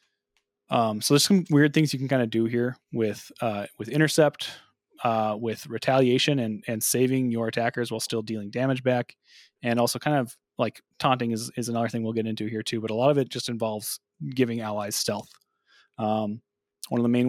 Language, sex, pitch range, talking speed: English, male, 110-130 Hz, 205 wpm